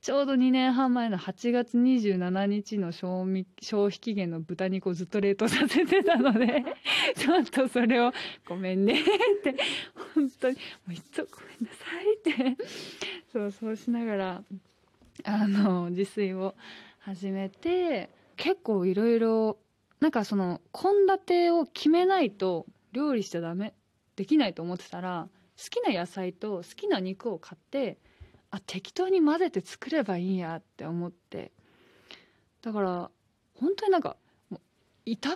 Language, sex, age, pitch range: Japanese, female, 20-39, 190-295 Hz